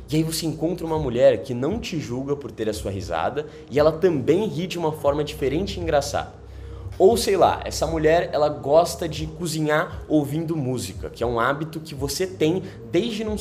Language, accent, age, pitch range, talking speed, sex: Portuguese, Brazilian, 20-39, 115-160 Hz, 200 wpm, male